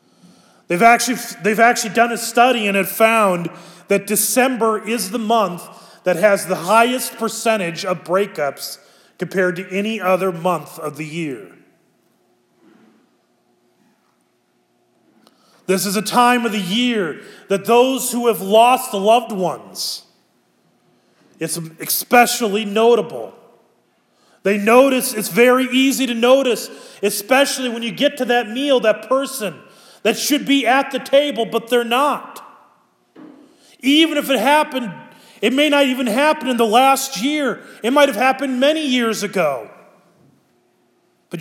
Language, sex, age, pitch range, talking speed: English, male, 30-49, 185-245 Hz, 135 wpm